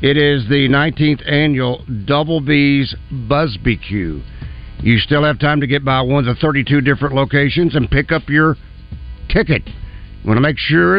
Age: 60-79